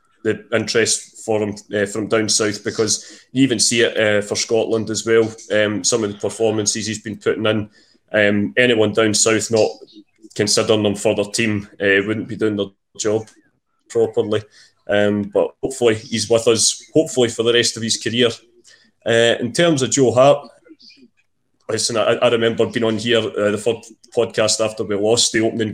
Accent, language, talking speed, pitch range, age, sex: British, English, 185 wpm, 110-120 Hz, 20-39, male